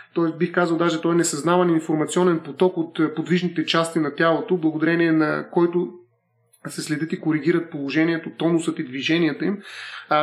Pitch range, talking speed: 155-180 Hz, 160 wpm